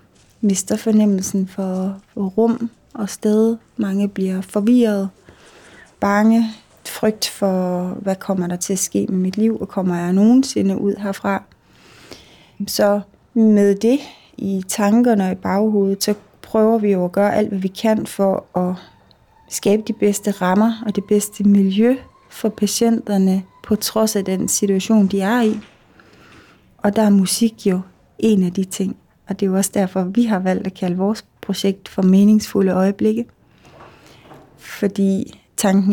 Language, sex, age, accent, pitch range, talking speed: Danish, female, 30-49, native, 195-220 Hz, 155 wpm